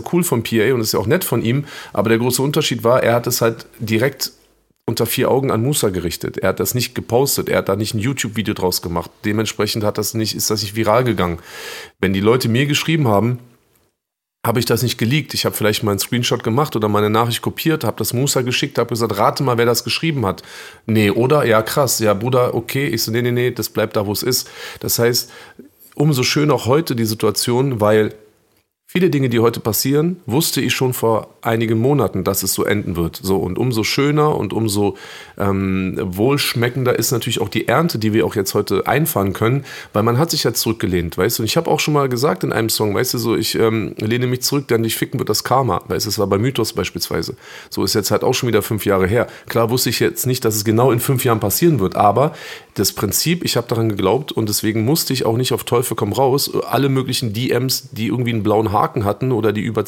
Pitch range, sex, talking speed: 110-130 Hz, male, 235 wpm